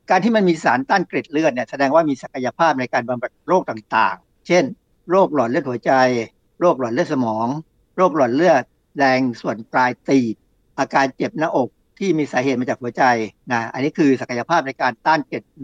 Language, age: Thai, 60-79